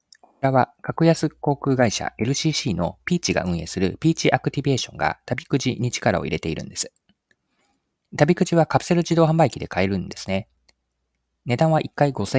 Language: Japanese